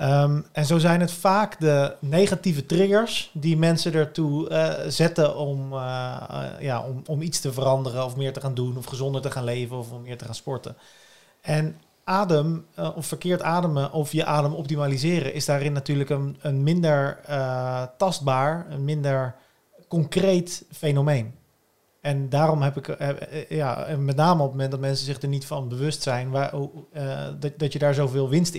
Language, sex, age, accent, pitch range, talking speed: Dutch, male, 40-59, Dutch, 130-155 Hz, 150 wpm